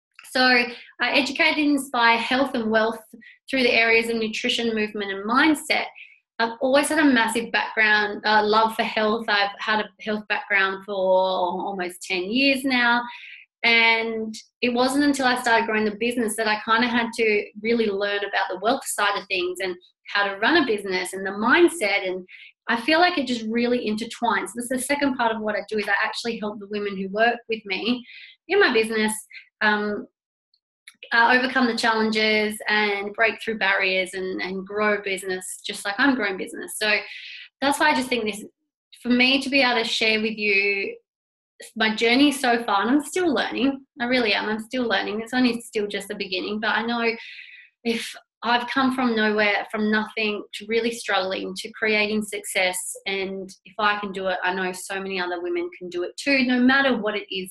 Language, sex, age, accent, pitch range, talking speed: English, female, 20-39, Australian, 205-245 Hz, 200 wpm